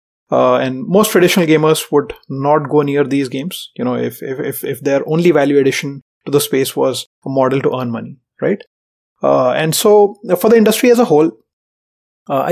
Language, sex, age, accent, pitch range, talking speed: English, male, 30-49, Indian, 135-180 Hz, 195 wpm